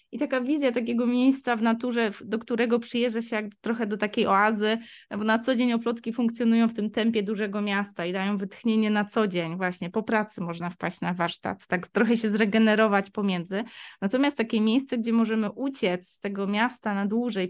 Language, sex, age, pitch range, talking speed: Polish, female, 20-39, 210-255 Hz, 190 wpm